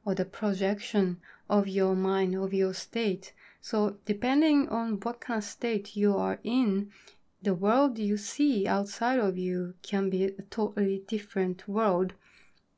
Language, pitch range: Japanese, 195-220 Hz